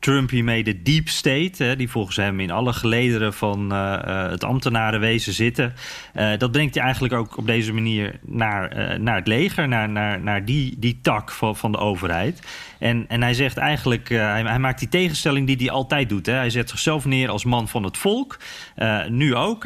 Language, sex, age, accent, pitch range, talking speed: Dutch, male, 40-59, Dutch, 110-145 Hz, 190 wpm